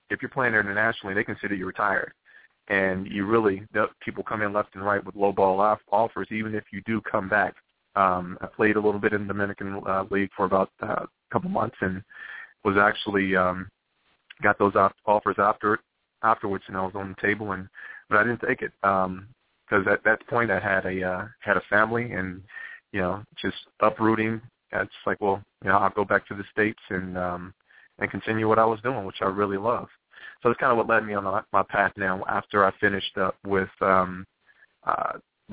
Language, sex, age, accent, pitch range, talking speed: English, male, 30-49, American, 95-105 Hz, 210 wpm